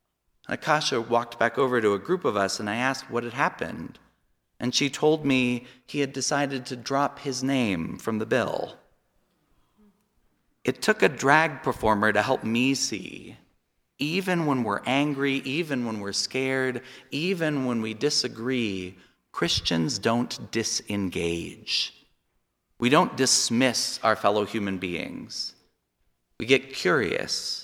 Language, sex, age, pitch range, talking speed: English, male, 40-59, 110-140 Hz, 135 wpm